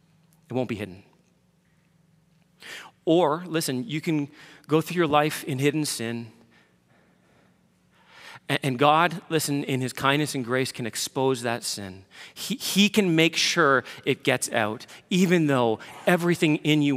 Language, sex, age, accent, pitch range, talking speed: English, male, 40-59, American, 115-160 Hz, 140 wpm